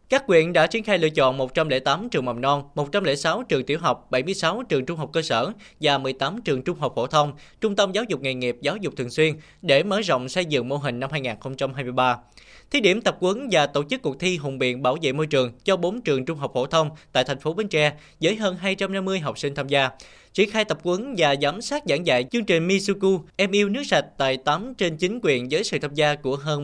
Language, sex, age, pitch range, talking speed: Vietnamese, male, 20-39, 130-185 Hz, 245 wpm